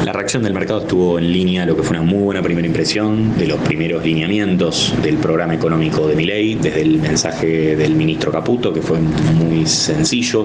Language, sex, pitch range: Spanish, male, 80-100 Hz